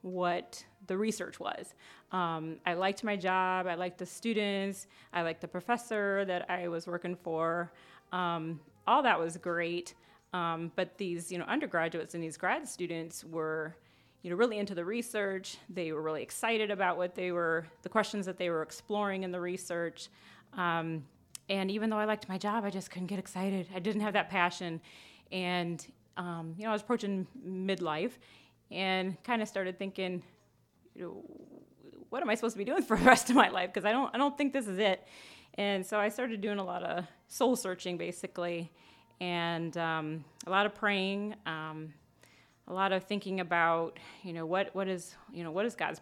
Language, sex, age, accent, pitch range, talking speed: English, female, 30-49, American, 170-200 Hz, 195 wpm